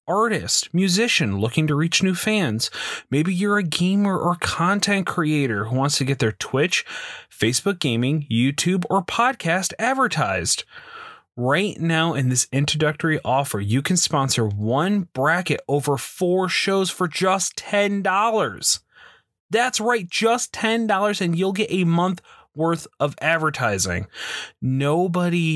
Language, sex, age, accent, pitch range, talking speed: English, male, 30-49, American, 130-185 Hz, 130 wpm